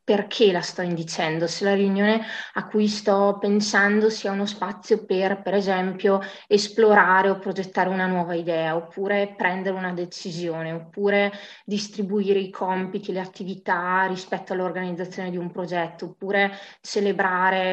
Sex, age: female, 20-39